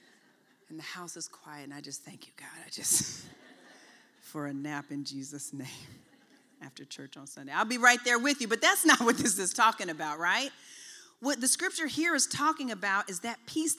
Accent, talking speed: American, 210 wpm